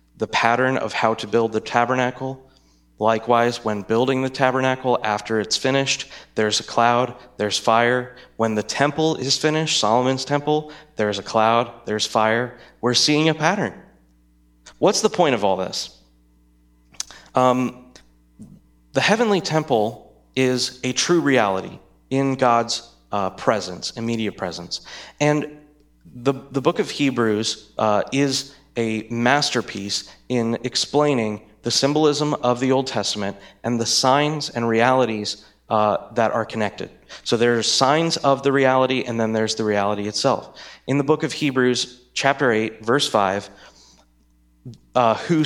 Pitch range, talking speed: 105-135 Hz, 140 wpm